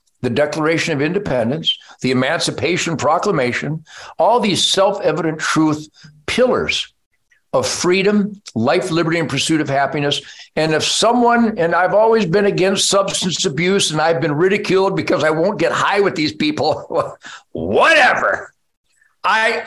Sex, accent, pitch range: male, American, 170-210 Hz